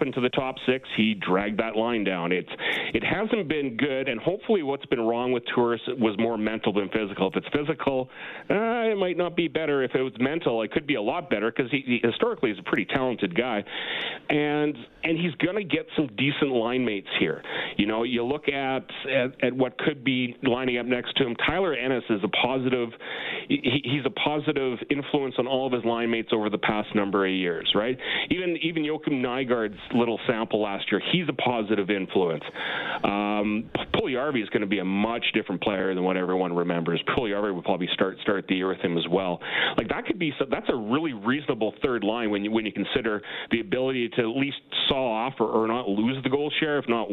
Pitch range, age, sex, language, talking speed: 105-140 Hz, 40-59, male, English, 220 wpm